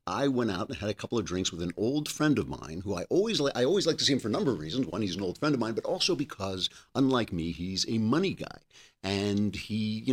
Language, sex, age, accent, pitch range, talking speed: English, male, 50-69, American, 100-135 Hz, 290 wpm